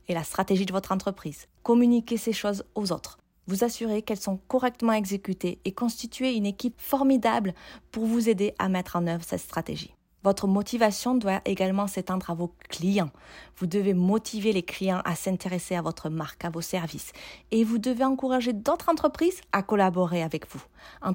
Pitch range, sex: 185-230 Hz, female